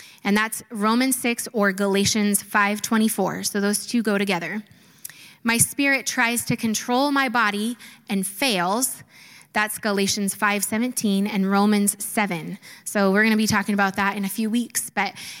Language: English